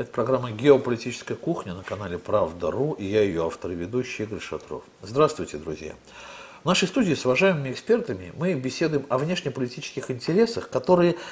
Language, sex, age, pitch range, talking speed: Russian, male, 50-69, 110-155 Hz, 155 wpm